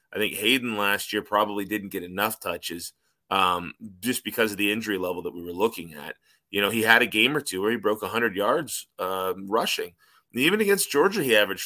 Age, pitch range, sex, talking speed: 20-39, 105-130 Hz, male, 215 wpm